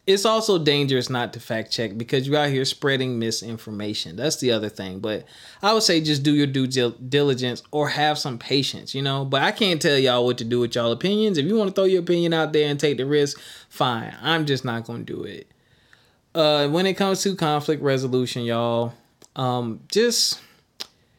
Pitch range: 120-150 Hz